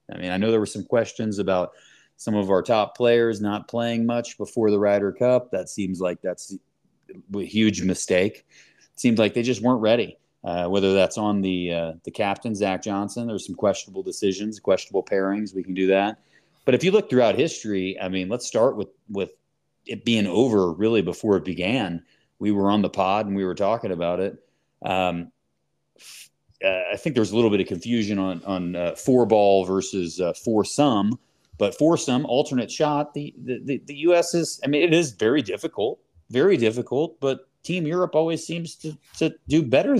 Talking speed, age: 195 wpm, 30-49